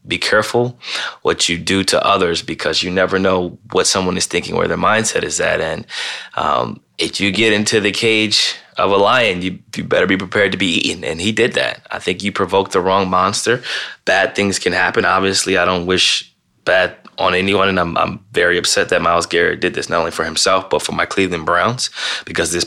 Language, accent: English, American